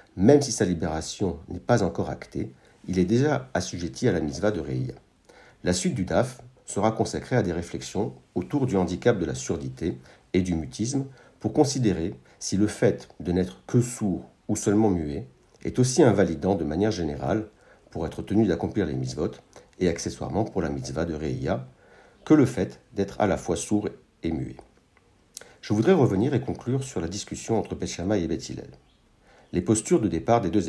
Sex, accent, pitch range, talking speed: male, French, 85-115 Hz, 185 wpm